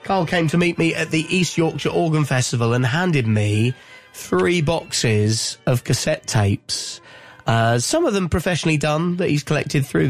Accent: British